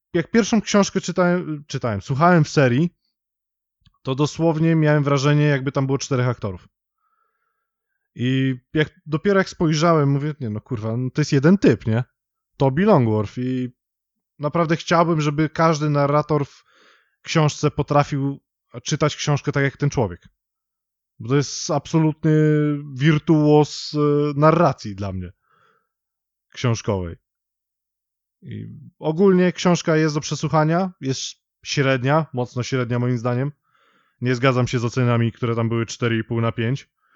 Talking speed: 130 wpm